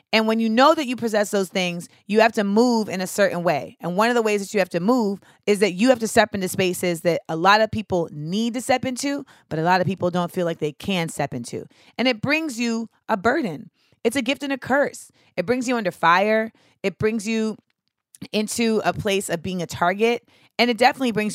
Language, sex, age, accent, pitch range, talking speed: English, female, 30-49, American, 175-225 Hz, 245 wpm